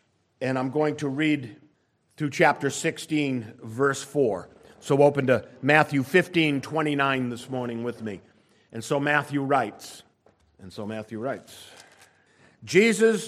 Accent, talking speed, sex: American, 130 wpm, male